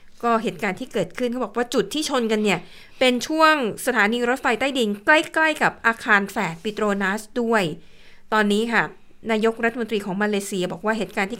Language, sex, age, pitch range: Thai, female, 60-79, 200-240 Hz